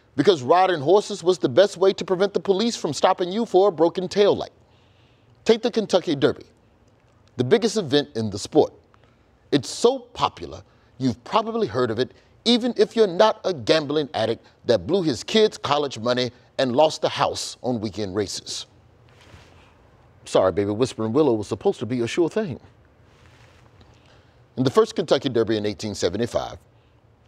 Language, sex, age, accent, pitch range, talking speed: English, male, 30-49, American, 115-180 Hz, 165 wpm